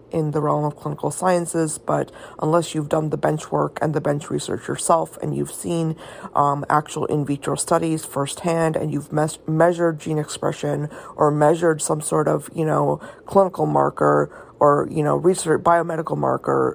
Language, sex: English, female